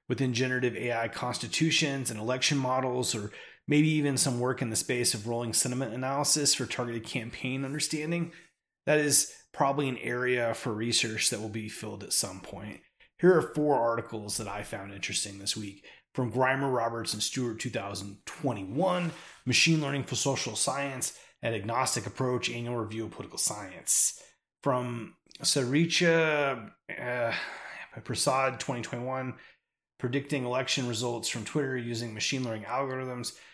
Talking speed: 140 wpm